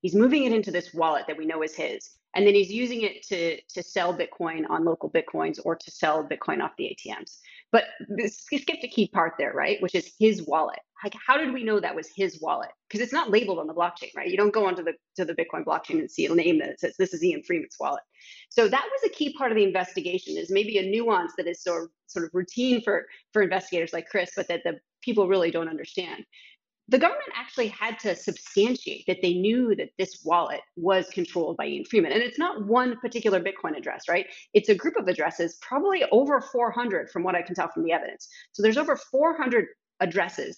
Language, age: English, 30-49